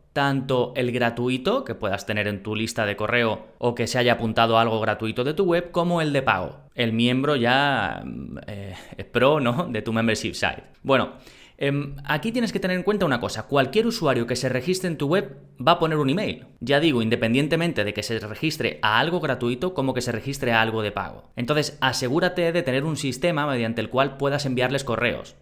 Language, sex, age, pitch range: Spanish, male, 20-39, 110-140 Hz